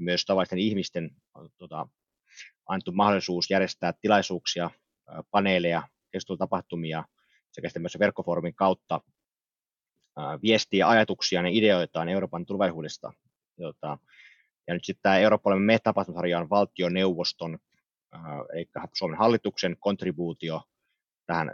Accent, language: native, Finnish